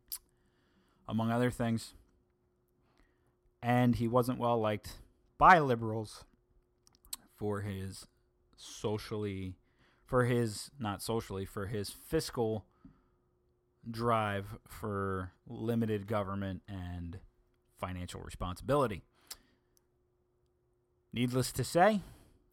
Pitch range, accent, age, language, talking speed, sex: 100-120 Hz, American, 30-49, English, 80 wpm, male